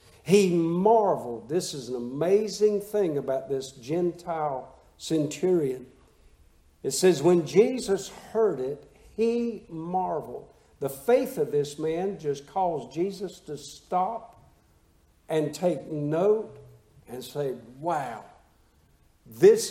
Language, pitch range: English, 145-195 Hz